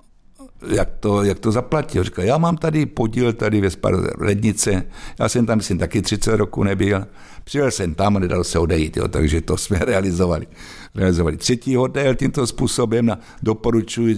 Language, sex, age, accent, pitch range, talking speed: Czech, male, 60-79, native, 90-110 Hz, 170 wpm